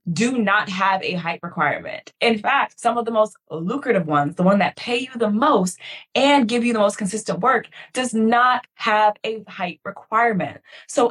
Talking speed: 190 wpm